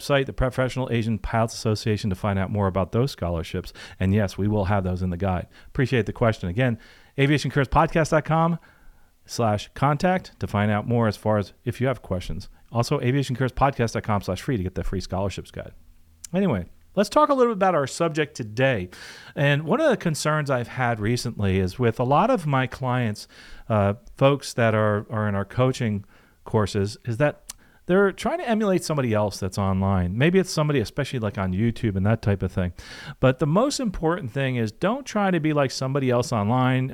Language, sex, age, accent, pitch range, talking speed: English, male, 40-59, American, 105-150 Hz, 195 wpm